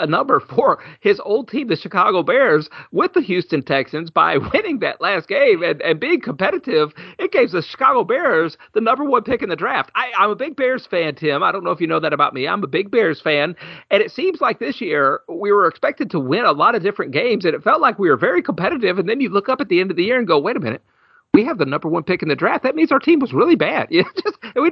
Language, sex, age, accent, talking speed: English, male, 40-59, American, 270 wpm